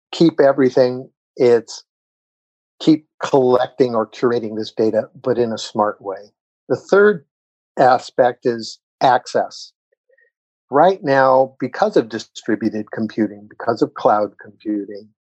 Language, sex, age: English, male, 60-79